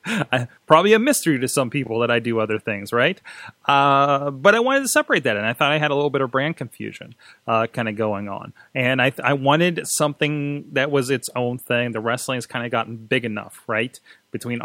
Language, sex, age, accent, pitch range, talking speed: English, male, 30-49, American, 115-140 Hz, 230 wpm